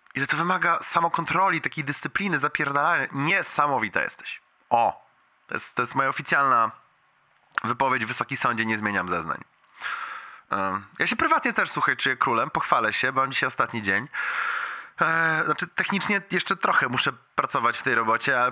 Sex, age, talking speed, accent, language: male, 20-39, 145 wpm, native, Polish